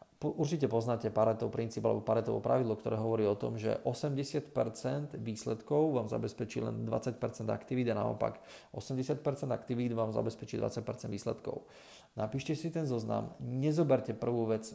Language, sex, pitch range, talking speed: Slovak, male, 110-130 Hz, 135 wpm